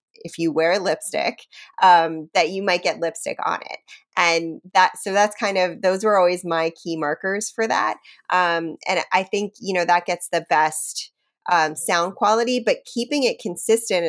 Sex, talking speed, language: female, 185 wpm, English